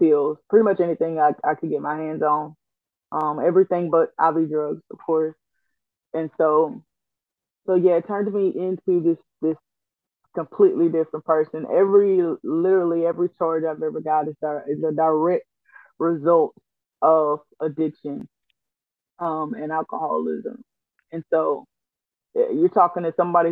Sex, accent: female, American